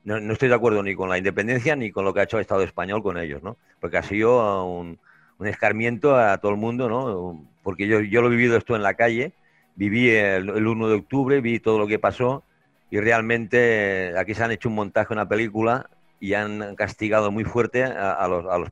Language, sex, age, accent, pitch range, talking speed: Spanish, male, 50-69, Spanish, 100-125 Hz, 235 wpm